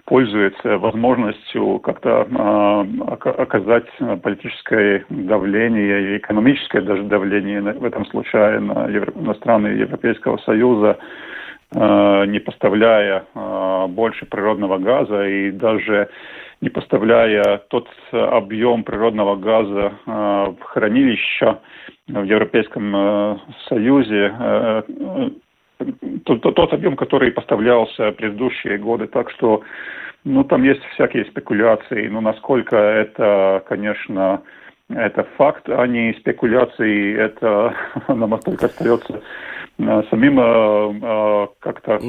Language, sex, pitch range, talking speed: Russian, male, 100-120 Hz, 100 wpm